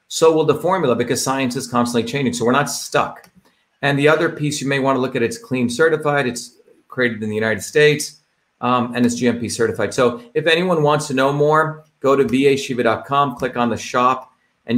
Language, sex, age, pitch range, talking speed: English, male, 40-59, 115-140 Hz, 210 wpm